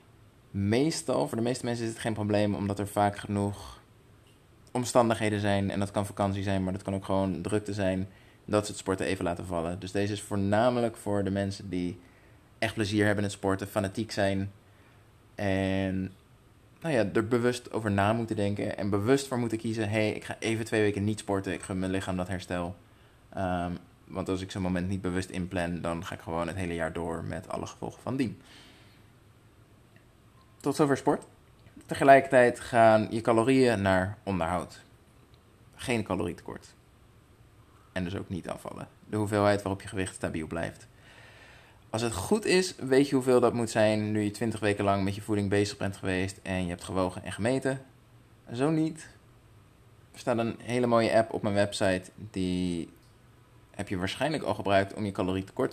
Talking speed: 185 wpm